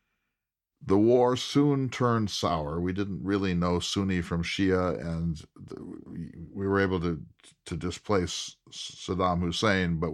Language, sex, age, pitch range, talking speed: English, male, 50-69, 80-105 Hz, 130 wpm